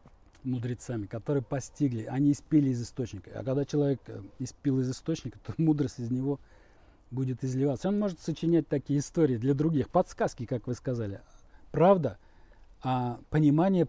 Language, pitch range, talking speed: Russian, 110-145 Hz, 145 wpm